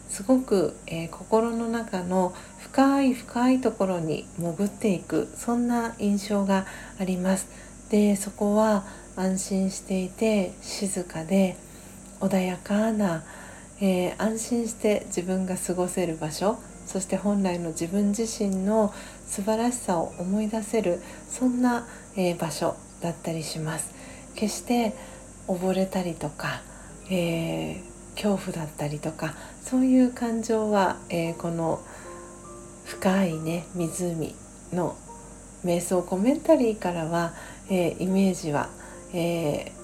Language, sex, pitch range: Japanese, female, 175-210 Hz